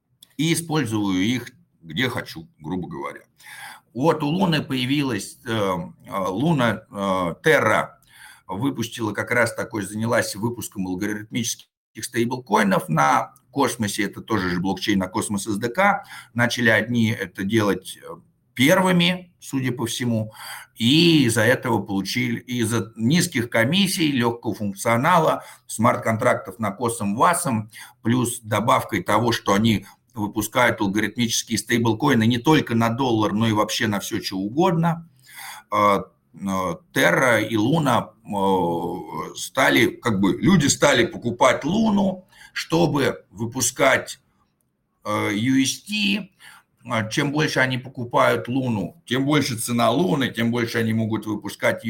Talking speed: 115 wpm